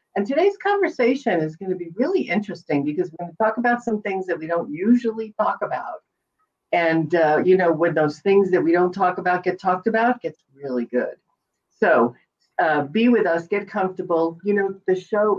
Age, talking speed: 50-69, 205 wpm